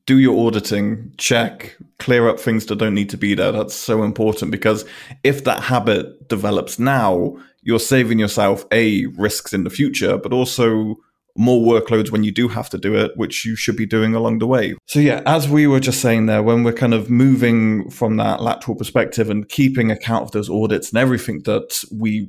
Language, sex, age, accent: English, male, 20-39, British